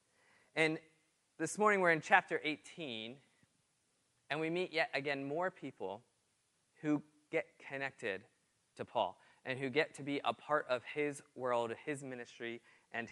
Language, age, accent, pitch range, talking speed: English, 20-39, American, 120-155 Hz, 145 wpm